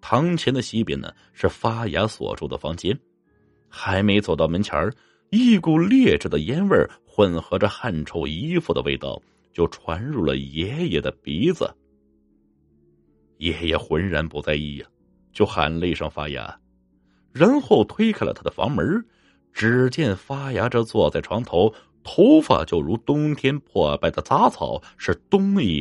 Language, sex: Chinese, male